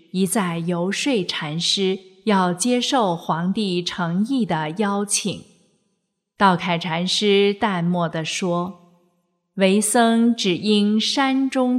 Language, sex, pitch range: Chinese, female, 175-215 Hz